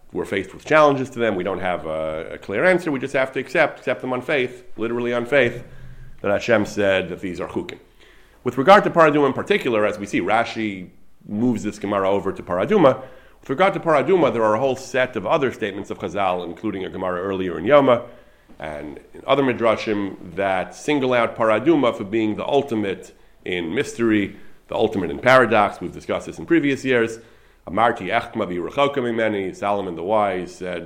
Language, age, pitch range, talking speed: English, 40-59, 100-130 Hz, 195 wpm